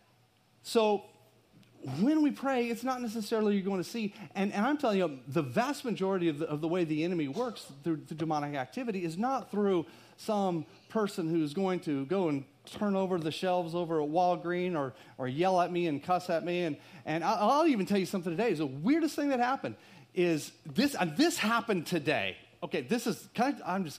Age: 40-59